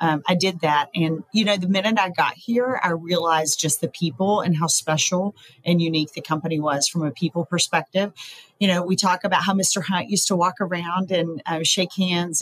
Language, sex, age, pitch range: English, female, 40-59, 160-195 Hz